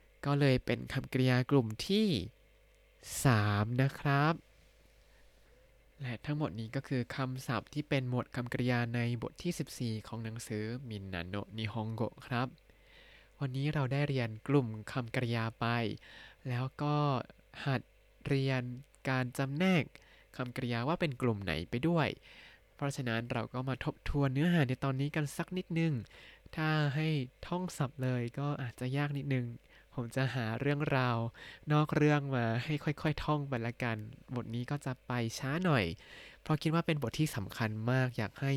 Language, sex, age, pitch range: Thai, male, 20-39, 120-150 Hz